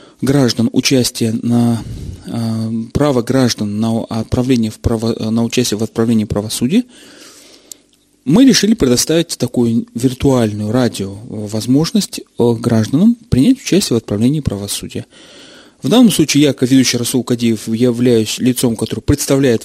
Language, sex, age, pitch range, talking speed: Russian, male, 30-49, 115-150 Hz, 120 wpm